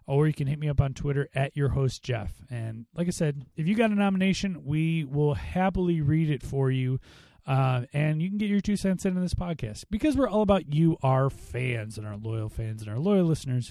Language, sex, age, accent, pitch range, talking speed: English, male, 30-49, American, 125-160 Hz, 240 wpm